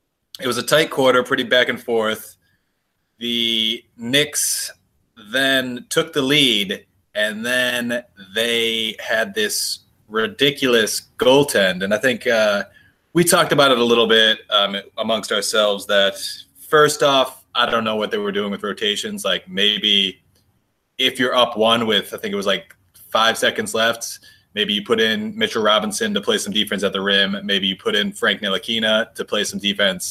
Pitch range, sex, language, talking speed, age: 105-135 Hz, male, English, 170 wpm, 20-39